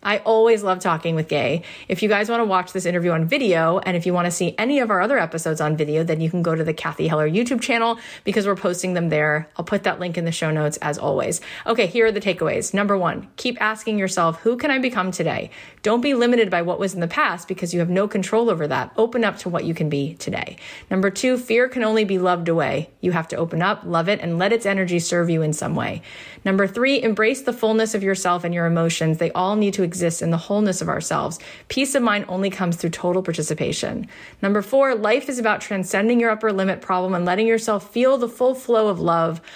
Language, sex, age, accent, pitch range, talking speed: English, female, 30-49, American, 170-220 Hz, 250 wpm